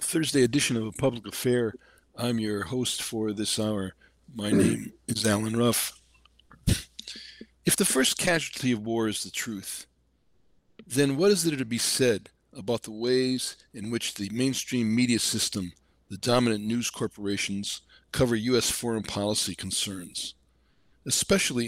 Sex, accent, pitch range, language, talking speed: male, American, 110-130 Hz, English, 145 wpm